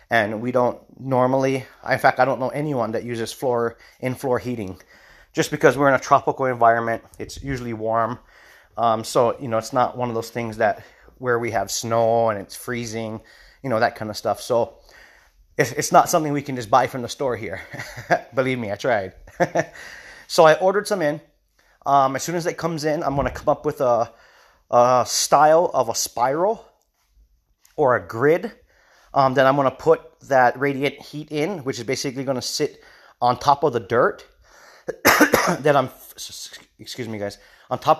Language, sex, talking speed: English, male, 190 wpm